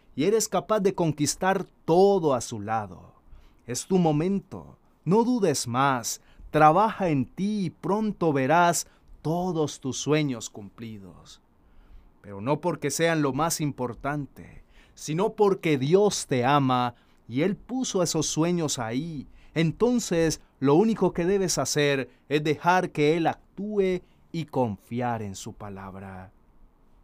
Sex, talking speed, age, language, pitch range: male, 130 wpm, 30-49, Spanish, 120-180 Hz